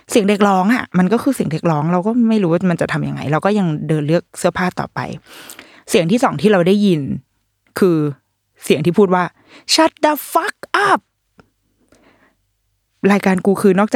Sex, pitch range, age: female, 160-220 Hz, 20-39